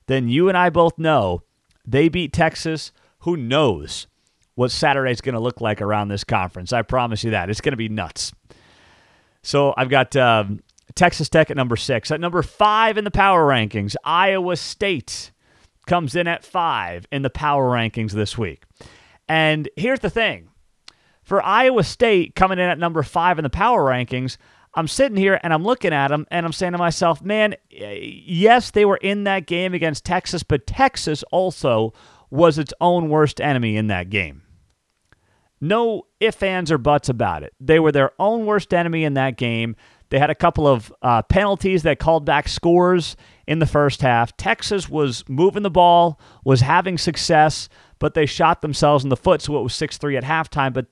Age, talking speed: 40-59, 190 wpm